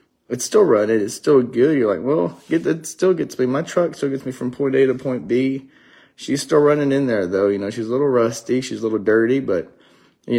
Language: English